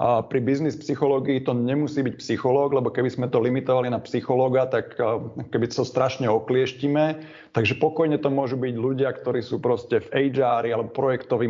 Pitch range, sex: 120-150 Hz, male